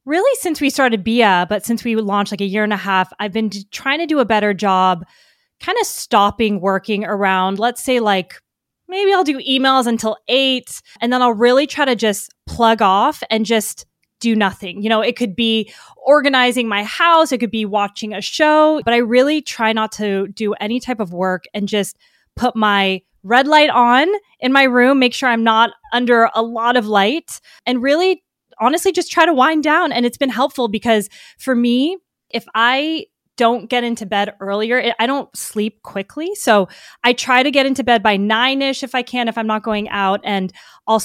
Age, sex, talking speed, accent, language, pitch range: 20-39, female, 205 wpm, American, English, 205-260 Hz